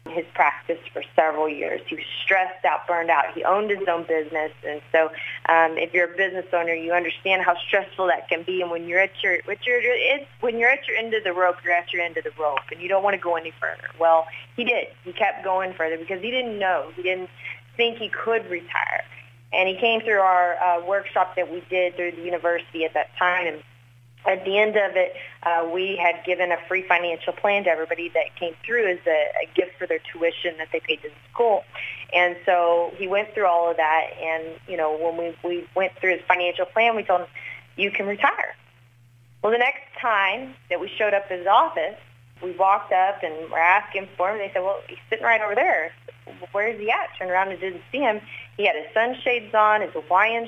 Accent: American